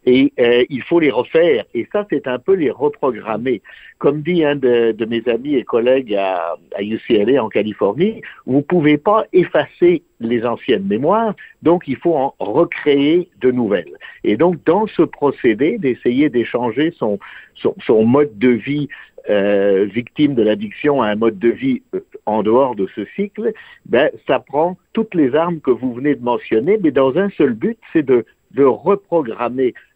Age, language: 60-79, French